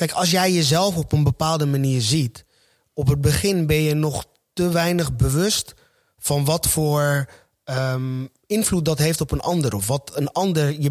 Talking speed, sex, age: 175 wpm, male, 30-49